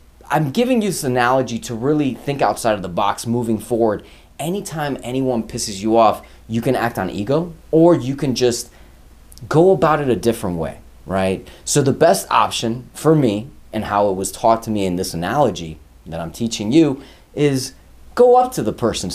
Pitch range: 100-145 Hz